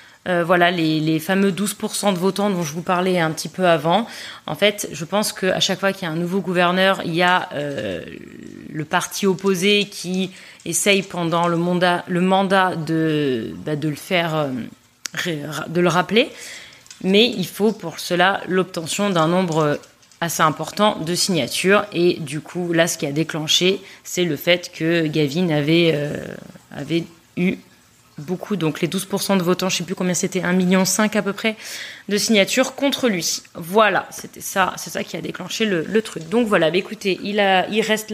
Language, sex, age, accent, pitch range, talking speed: French, female, 30-49, French, 170-200 Hz, 190 wpm